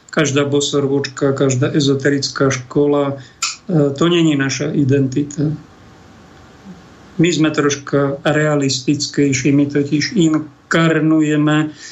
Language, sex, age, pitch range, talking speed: Slovak, male, 50-69, 140-160 Hz, 80 wpm